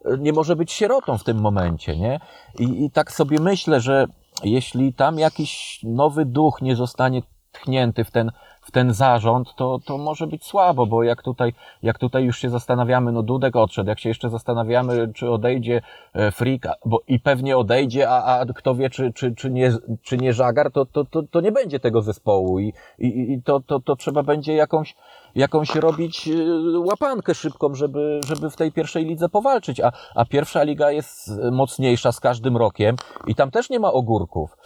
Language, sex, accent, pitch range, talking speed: Polish, male, native, 120-150 Hz, 190 wpm